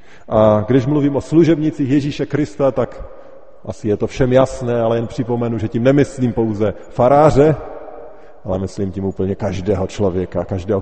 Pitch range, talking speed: 105-145 Hz, 155 wpm